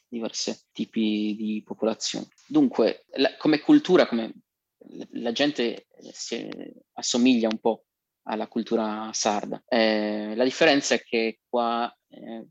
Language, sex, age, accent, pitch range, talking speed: Italian, male, 20-39, native, 110-120 Hz, 125 wpm